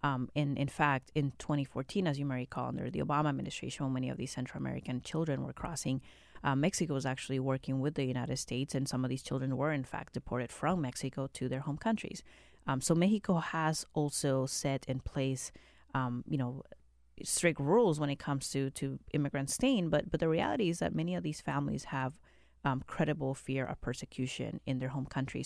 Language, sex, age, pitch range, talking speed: English, female, 30-49, 130-150 Hz, 205 wpm